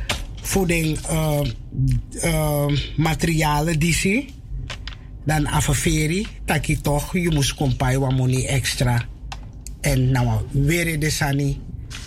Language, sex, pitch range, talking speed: Dutch, male, 130-170 Hz, 110 wpm